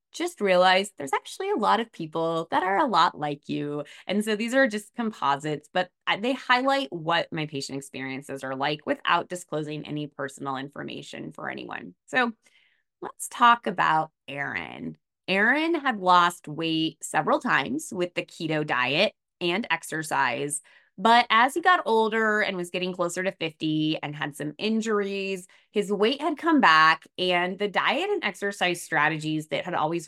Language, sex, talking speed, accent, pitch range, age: English, female, 165 wpm, American, 155-215 Hz, 20-39